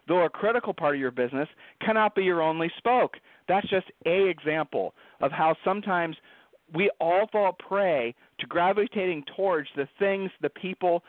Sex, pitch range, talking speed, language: male, 150-190 Hz, 160 wpm, English